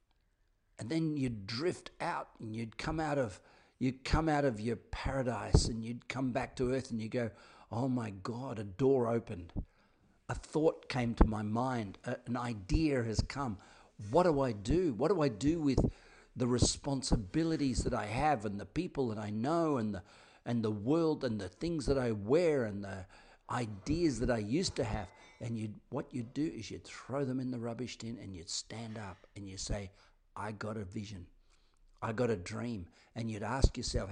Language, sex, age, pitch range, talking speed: English, male, 50-69, 105-125 Hz, 200 wpm